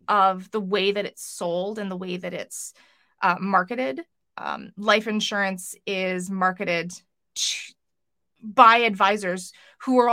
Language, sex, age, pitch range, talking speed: English, female, 20-39, 195-250 Hz, 135 wpm